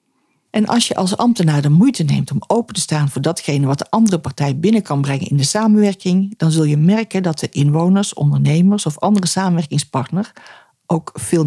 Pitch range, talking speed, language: 145-195 Hz, 195 wpm, Dutch